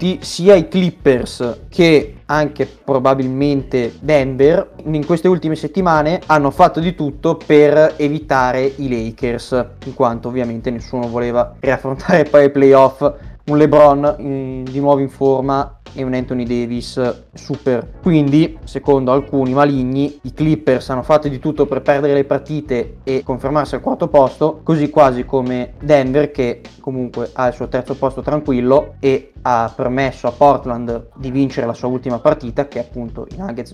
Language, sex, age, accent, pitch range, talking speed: Italian, male, 20-39, native, 130-150 Hz, 150 wpm